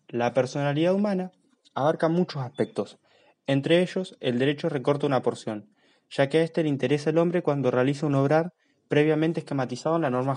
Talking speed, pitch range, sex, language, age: 175 wpm, 125-170 Hz, male, Spanish, 20-39